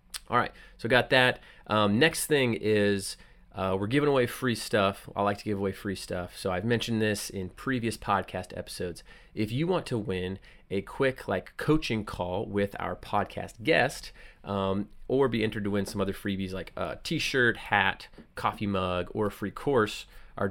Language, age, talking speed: English, 30-49, 185 wpm